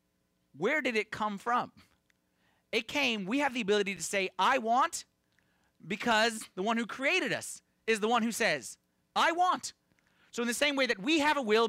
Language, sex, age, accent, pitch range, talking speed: English, male, 30-49, American, 180-270 Hz, 195 wpm